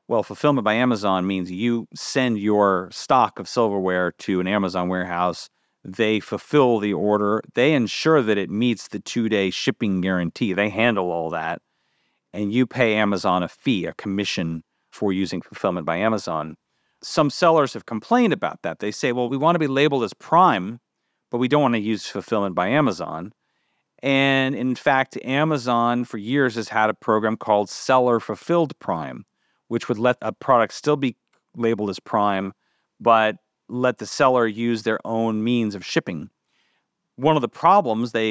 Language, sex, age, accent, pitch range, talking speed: English, male, 40-59, American, 100-130 Hz, 170 wpm